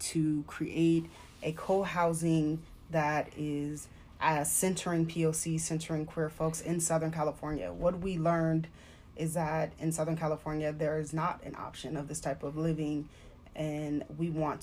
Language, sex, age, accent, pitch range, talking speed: English, female, 20-39, American, 150-165 Hz, 145 wpm